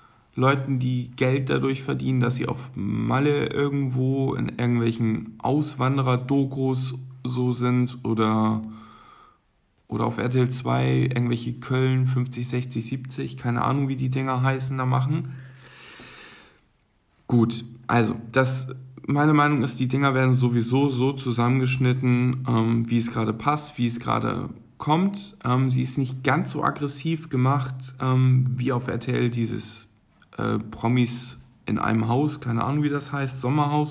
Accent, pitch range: German, 120-135 Hz